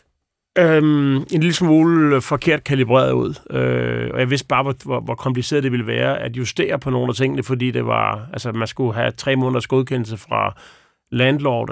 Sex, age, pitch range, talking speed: male, 40-59, 120-145 Hz, 190 wpm